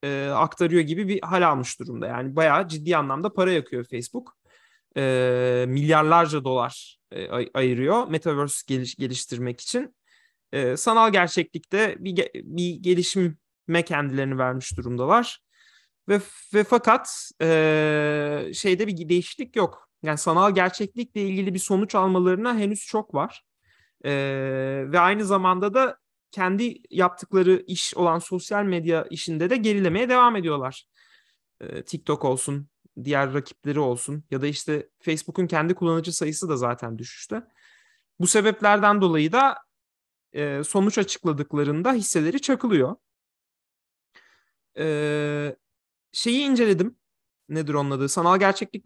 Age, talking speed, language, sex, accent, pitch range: 30-49, 125 wpm, Turkish, male, native, 145-200 Hz